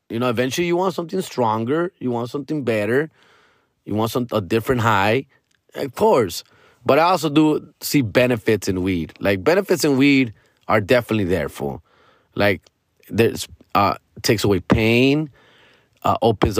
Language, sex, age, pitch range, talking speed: English, male, 30-49, 125-190 Hz, 155 wpm